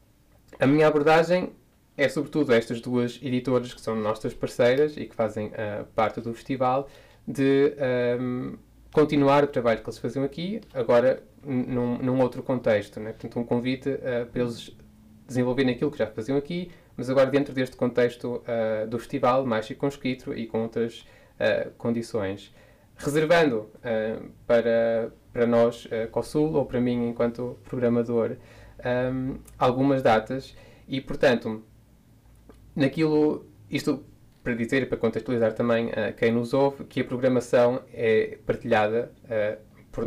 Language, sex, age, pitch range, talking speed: Portuguese, male, 20-39, 115-140 Hz, 150 wpm